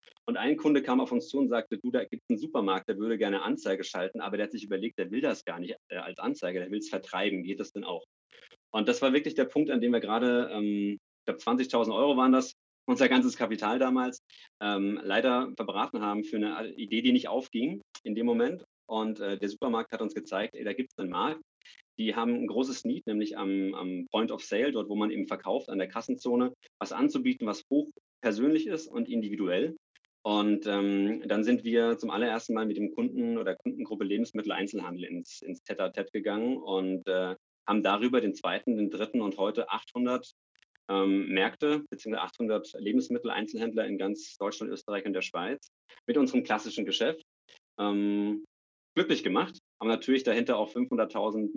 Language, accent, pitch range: German, German, 100-145 Hz